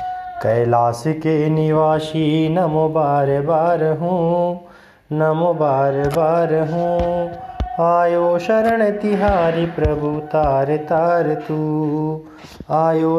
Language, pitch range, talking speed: Hindi, 155-200 Hz, 90 wpm